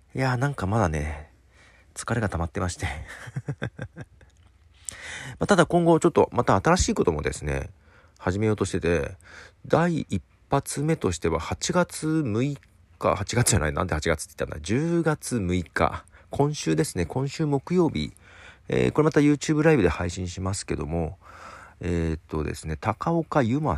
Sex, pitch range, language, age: male, 80-105 Hz, Japanese, 40-59